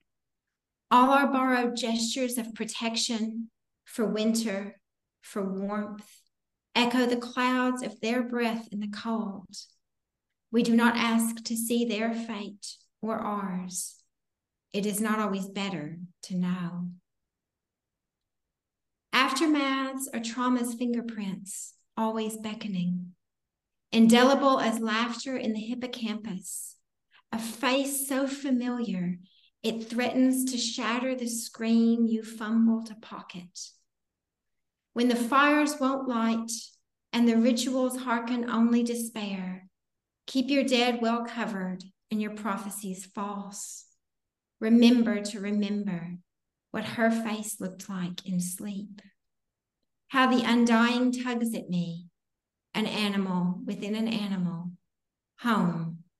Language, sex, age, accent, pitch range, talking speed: English, female, 50-69, American, 195-240 Hz, 110 wpm